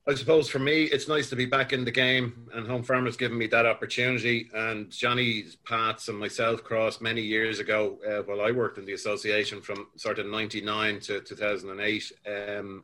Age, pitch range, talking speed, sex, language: 30-49, 105-140 Hz, 200 wpm, male, English